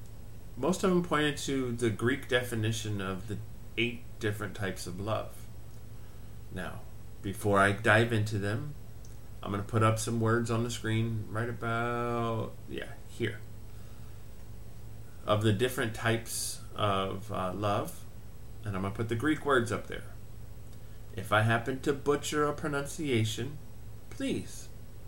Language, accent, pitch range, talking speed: English, American, 105-115 Hz, 145 wpm